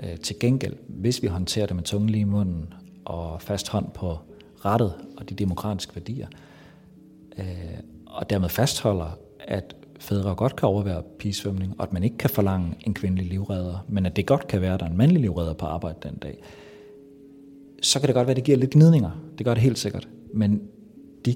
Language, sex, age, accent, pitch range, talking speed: Danish, male, 40-59, native, 95-125 Hz, 200 wpm